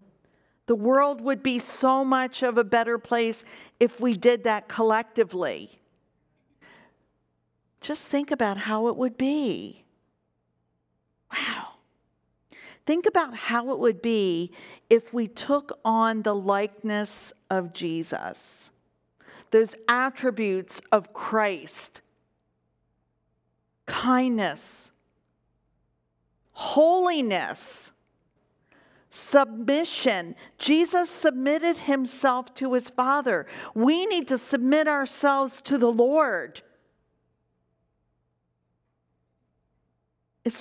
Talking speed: 85 wpm